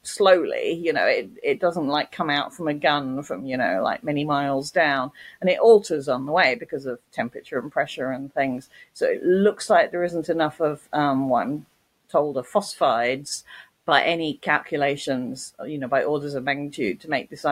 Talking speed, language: 200 wpm, English